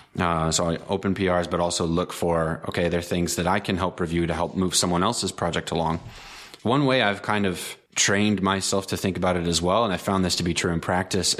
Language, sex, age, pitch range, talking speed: English, male, 20-39, 85-100 Hz, 245 wpm